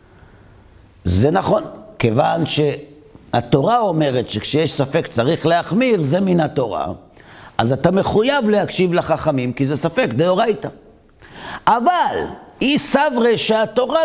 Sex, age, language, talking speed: male, 50-69, Hebrew, 105 wpm